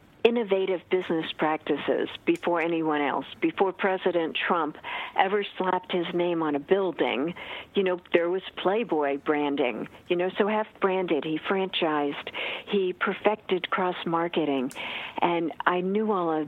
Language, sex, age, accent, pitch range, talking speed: English, female, 50-69, American, 165-200 Hz, 130 wpm